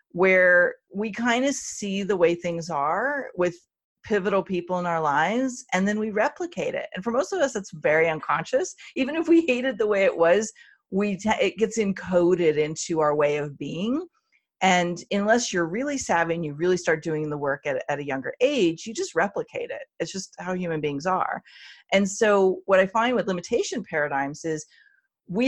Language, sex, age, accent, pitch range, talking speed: English, female, 40-59, American, 165-225 Hz, 195 wpm